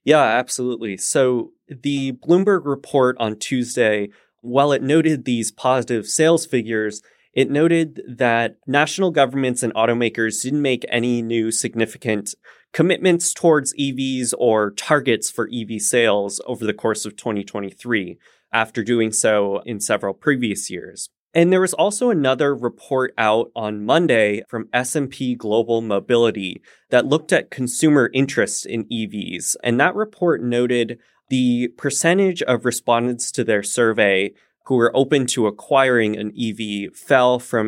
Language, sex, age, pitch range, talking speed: English, male, 20-39, 110-140 Hz, 140 wpm